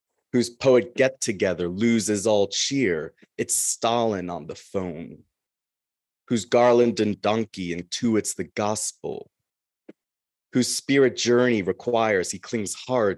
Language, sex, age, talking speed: English, male, 20-39, 120 wpm